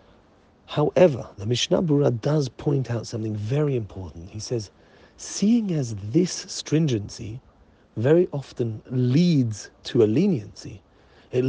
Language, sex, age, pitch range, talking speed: English, male, 40-59, 105-145 Hz, 120 wpm